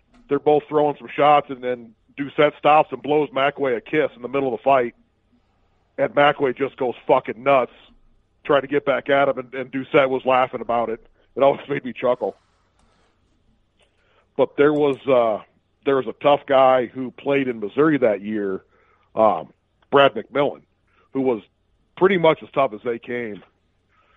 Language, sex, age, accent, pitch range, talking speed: English, male, 40-59, American, 115-145 Hz, 175 wpm